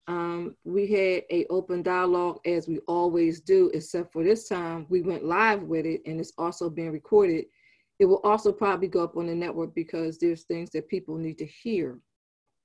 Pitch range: 170-215 Hz